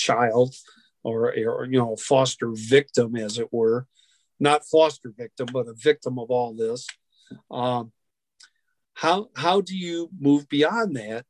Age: 50-69